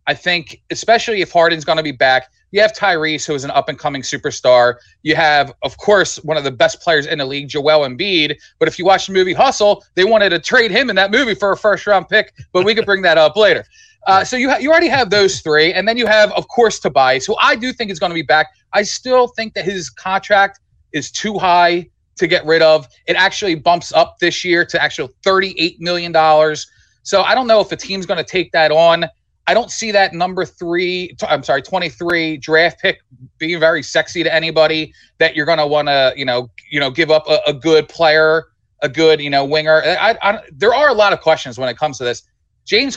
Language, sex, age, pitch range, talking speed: English, male, 30-49, 155-200 Hz, 230 wpm